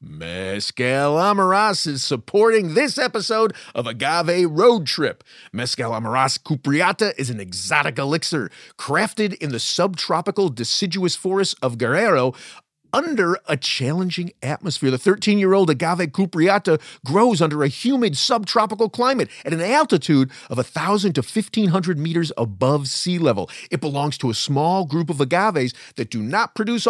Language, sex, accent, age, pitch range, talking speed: English, male, American, 40-59, 130-205 Hz, 135 wpm